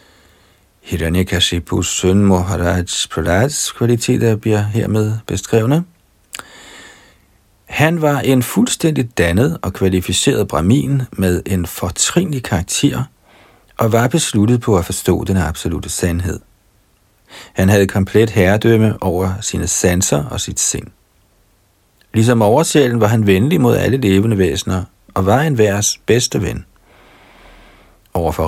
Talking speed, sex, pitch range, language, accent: 115 wpm, male, 90-115 Hz, Danish, native